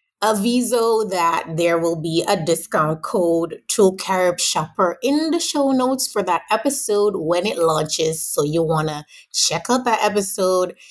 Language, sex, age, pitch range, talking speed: English, female, 20-39, 160-225 Hz, 160 wpm